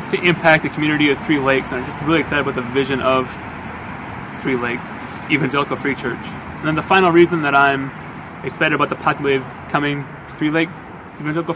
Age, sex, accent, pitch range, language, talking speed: 20-39, male, American, 135-165 Hz, English, 195 wpm